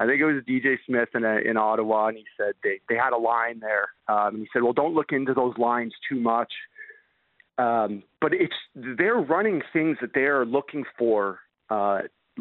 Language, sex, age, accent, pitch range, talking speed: English, male, 40-59, American, 115-140 Hz, 210 wpm